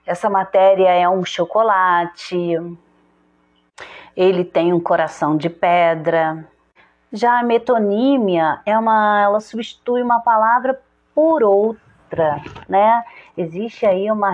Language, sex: Portuguese, female